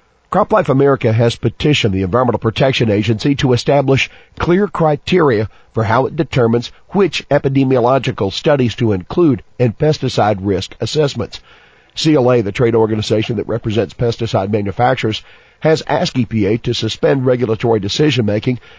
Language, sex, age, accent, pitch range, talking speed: English, male, 50-69, American, 110-135 Hz, 130 wpm